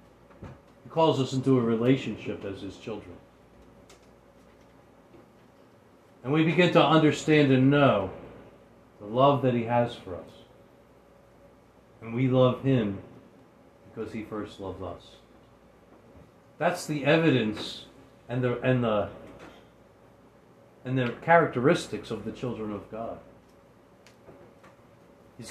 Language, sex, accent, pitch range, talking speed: English, male, American, 105-140 Hz, 105 wpm